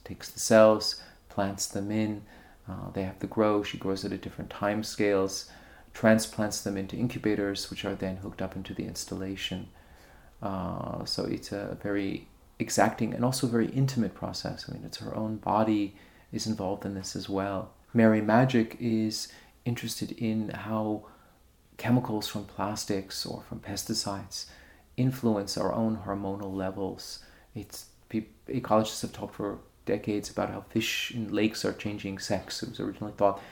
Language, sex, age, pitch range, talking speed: English, male, 40-59, 95-110 Hz, 155 wpm